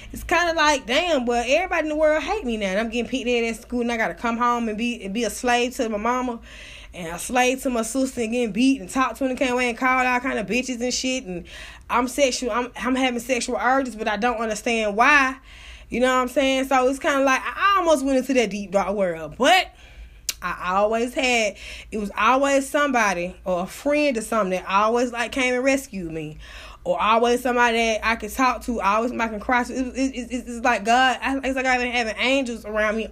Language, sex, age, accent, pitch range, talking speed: English, female, 20-39, American, 210-265 Hz, 245 wpm